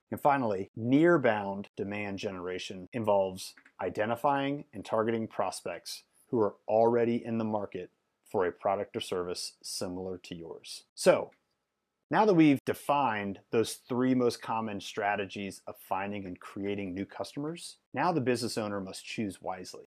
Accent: American